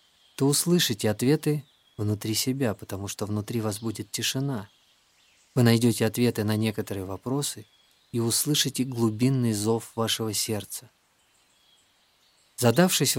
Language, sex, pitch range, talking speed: Russian, male, 105-125 Hz, 110 wpm